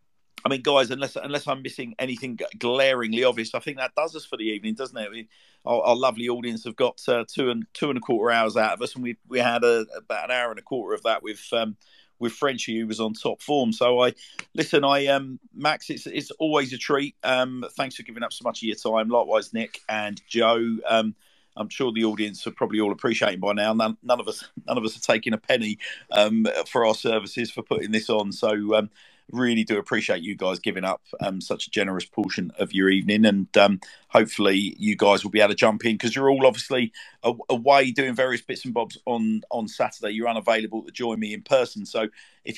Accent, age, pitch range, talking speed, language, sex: British, 50-69, 110-130 Hz, 235 wpm, English, male